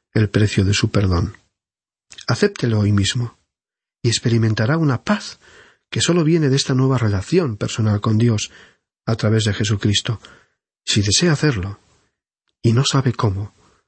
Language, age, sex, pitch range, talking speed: Spanish, 40-59, male, 100-125 Hz, 145 wpm